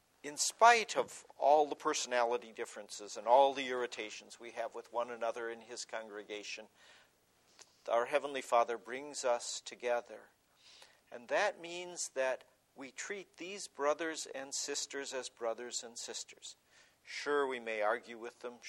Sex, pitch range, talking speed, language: male, 115-145 Hz, 145 wpm, English